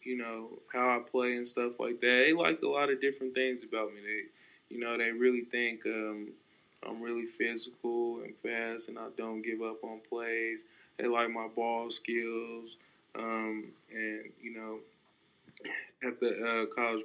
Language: English